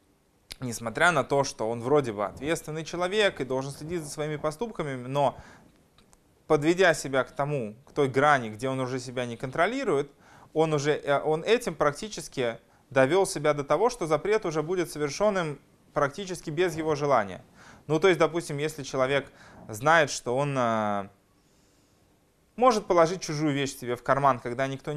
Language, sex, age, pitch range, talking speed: Russian, male, 20-39, 130-170 Hz, 155 wpm